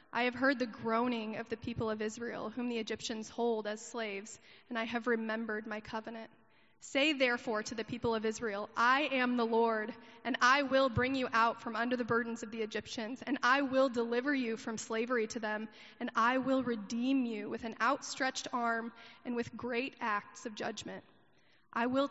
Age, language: 20-39, English